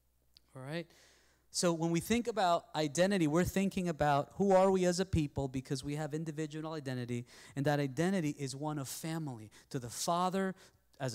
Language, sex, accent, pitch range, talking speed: English, male, American, 155-200 Hz, 180 wpm